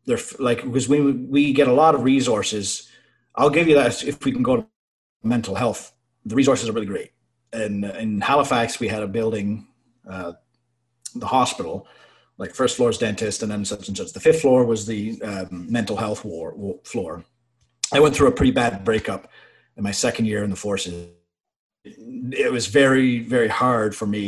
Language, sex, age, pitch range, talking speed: English, male, 30-49, 105-125 Hz, 190 wpm